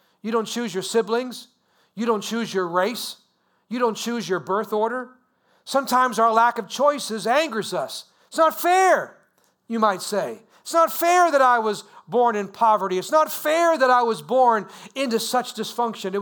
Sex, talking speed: male, 180 wpm